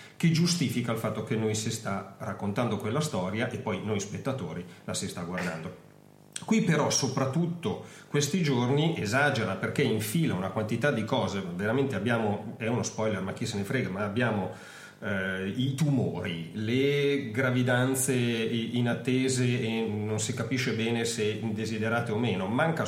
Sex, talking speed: male, 155 wpm